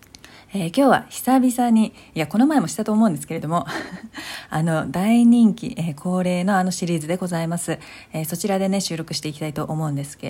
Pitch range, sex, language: 155-200 Hz, female, Japanese